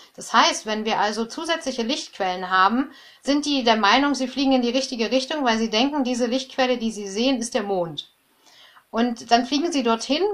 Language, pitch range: German, 215-260 Hz